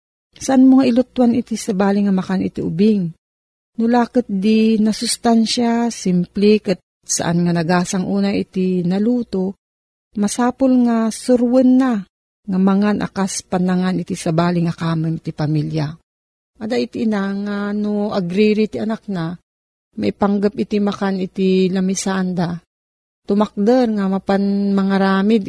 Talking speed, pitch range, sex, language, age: 130 wpm, 175-225 Hz, female, Filipino, 40-59